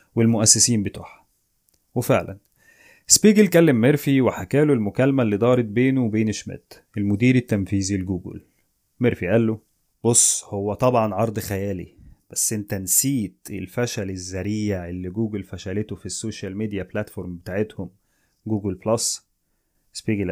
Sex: male